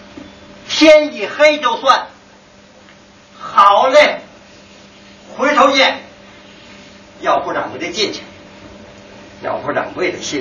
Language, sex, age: Chinese, male, 60-79